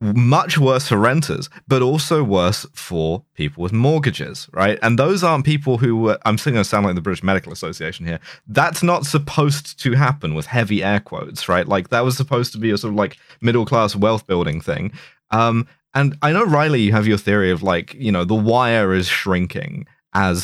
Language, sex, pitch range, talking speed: English, male, 95-130 Hz, 210 wpm